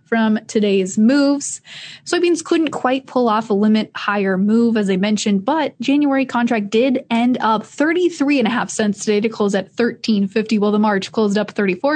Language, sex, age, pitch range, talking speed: English, female, 20-39, 210-260 Hz, 190 wpm